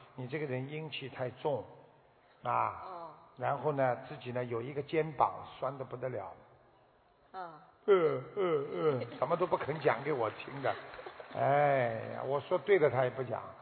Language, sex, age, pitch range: Chinese, male, 50-69, 145-200 Hz